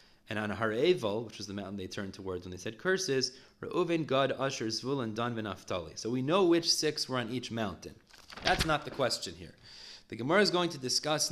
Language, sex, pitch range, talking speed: English, male, 110-150 Hz, 215 wpm